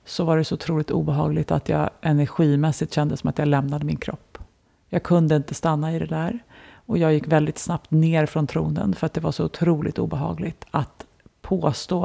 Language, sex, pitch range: Swedish, female, 145-165 Hz